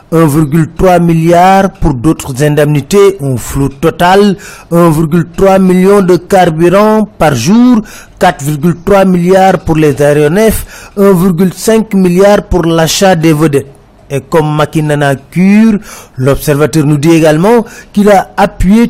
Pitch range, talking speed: 150-195 Hz, 115 wpm